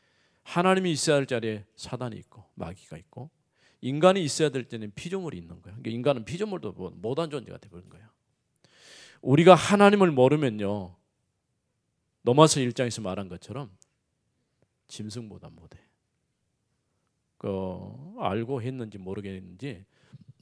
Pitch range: 100-145 Hz